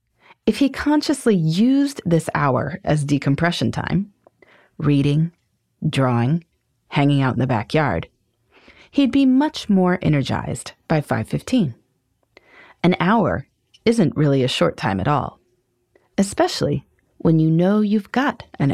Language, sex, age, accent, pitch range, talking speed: English, female, 30-49, American, 140-225 Hz, 125 wpm